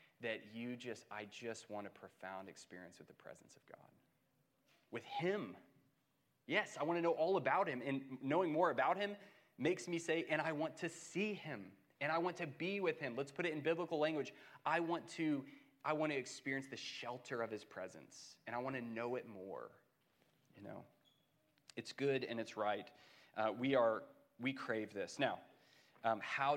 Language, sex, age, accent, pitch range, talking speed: English, male, 30-49, American, 115-150 Hz, 190 wpm